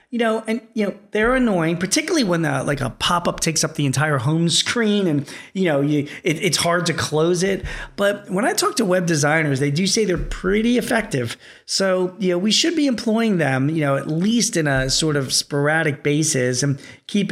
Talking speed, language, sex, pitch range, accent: 215 wpm, English, male, 140-180 Hz, American